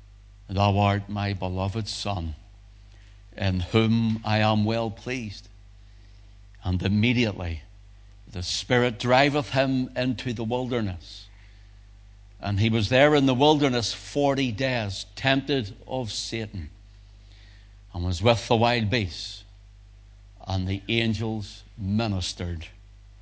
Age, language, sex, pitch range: 60-79, English, male, 100-110 Hz